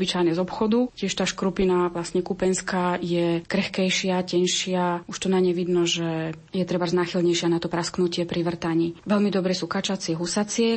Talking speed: 160 wpm